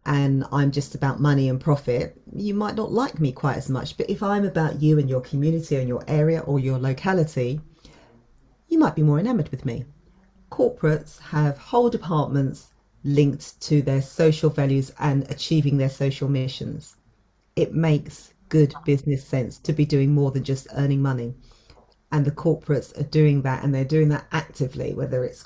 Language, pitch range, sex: English, 140-175 Hz, female